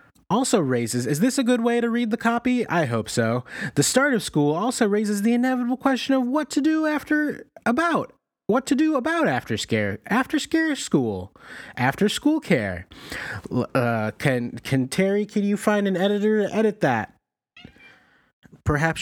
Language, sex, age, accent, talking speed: English, male, 30-49, American, 170 wpm